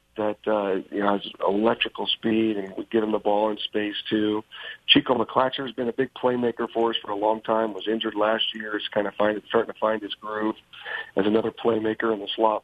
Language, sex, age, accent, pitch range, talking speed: English, male, 50-69, American, 100-110 Hz, 230 wpm